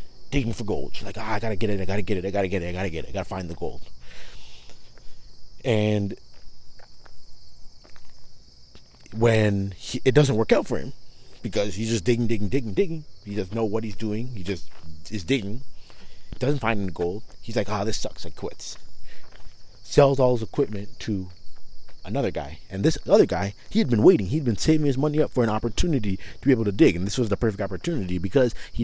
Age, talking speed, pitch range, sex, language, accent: 30-49, 210 wpm, 95-120 Hz, male, English, American